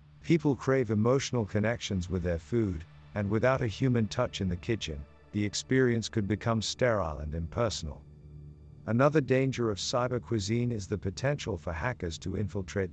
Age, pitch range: 50-69, 85-120 Hz